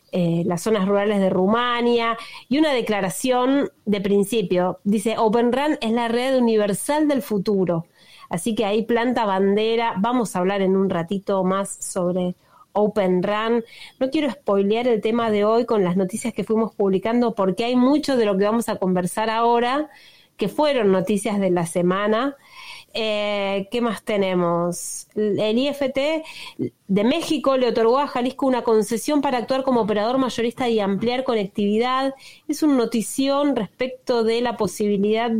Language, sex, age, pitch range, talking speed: Spanish, female, 30-49, 200-250 Hz, 160 wpm